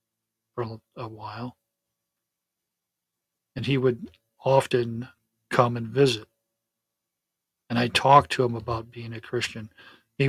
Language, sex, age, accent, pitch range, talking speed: English, male, 50-69, American, 115-130 Hz, 115 wpm